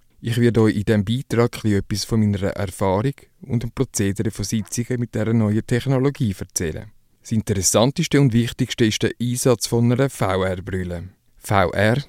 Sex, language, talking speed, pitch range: male, English, 155 wpm, 105-130 Hz